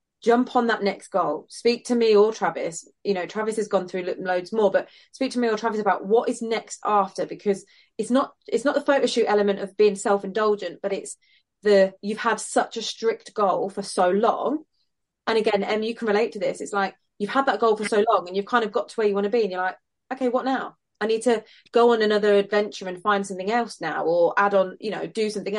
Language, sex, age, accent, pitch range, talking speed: English, female, 20-39, British, 195-230 Hz, 250 wpm